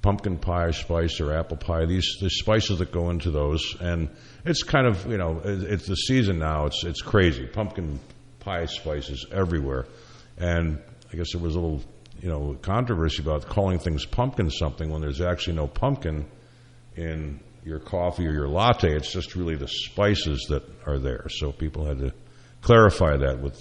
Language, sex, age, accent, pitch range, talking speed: English, male, 60-79, American, 75-100 Hz, 180 wpm